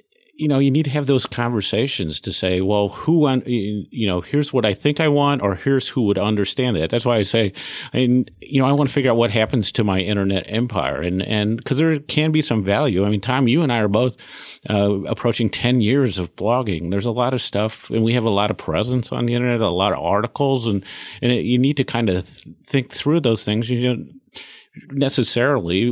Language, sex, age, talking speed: English, male, 40-59, 235 wpm